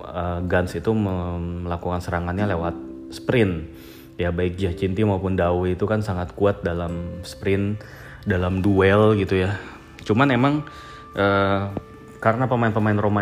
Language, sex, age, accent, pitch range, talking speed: Indonesian, male, 30-49, native, 90-105 Hz, 125 wpm